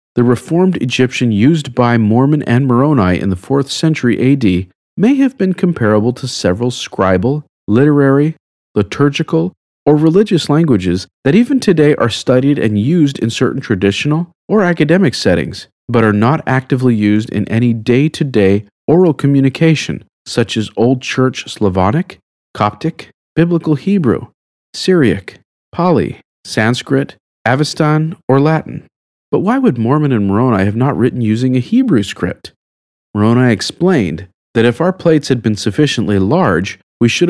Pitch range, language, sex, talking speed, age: 110-160 Hz, English, male, 140 wpm, 40-59